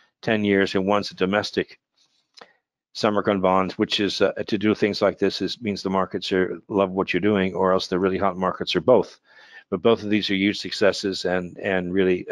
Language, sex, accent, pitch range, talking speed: English, male, American, 95-105 Hz, 215 wpm